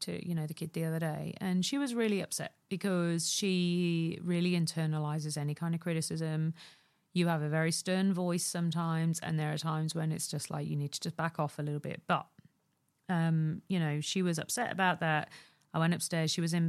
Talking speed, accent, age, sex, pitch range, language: 215 wpm, British, 40-59, female, 160-185 Hz, English